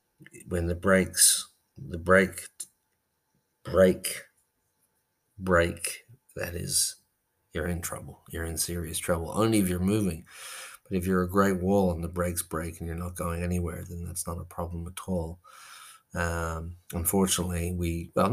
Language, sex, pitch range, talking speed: English, male, 85-95 Hz, 150 wpm